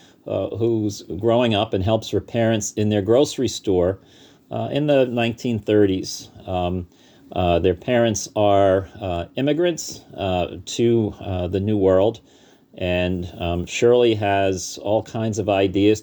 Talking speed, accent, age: 140 wpm, American, 40-59